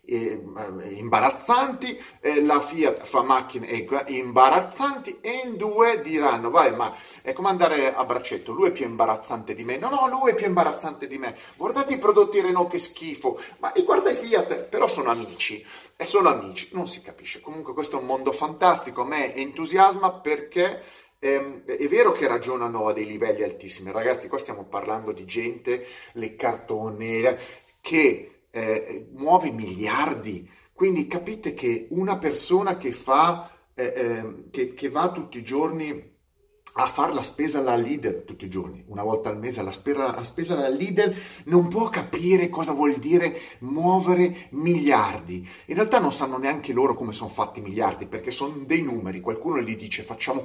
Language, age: Italian, 30-49